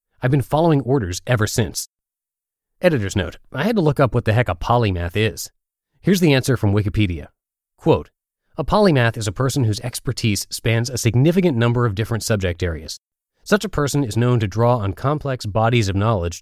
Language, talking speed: English, 190 wpm